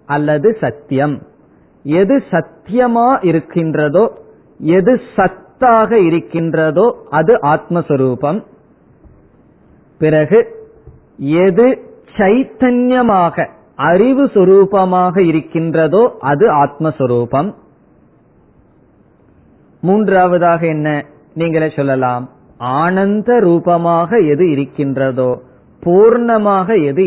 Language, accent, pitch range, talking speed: Tamil, native, 145-210 Hz, 60 wpm